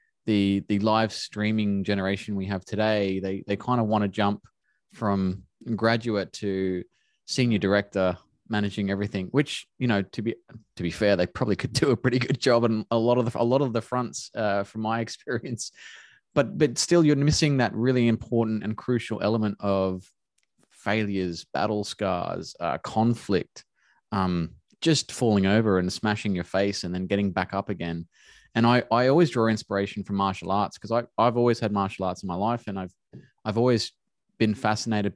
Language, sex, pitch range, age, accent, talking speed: English, male, 100-120 Hz, 20-39, Australian, 185 wpm